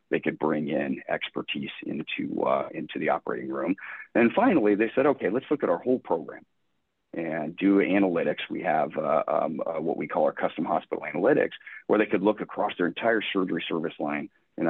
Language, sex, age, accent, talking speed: English, male, 40-59, American, 195 wpm